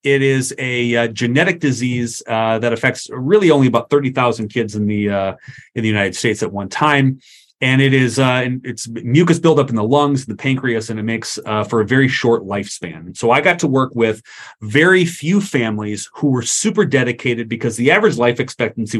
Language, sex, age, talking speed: English, male, 30-49, 195 wpm